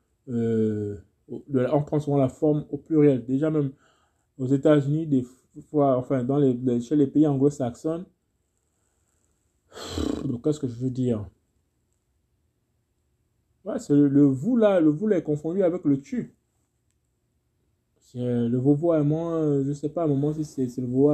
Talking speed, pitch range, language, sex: 160 wpm, 120-155 Hz, French, male